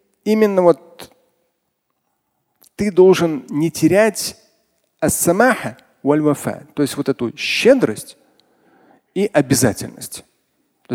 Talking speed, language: 80 wpm, Russian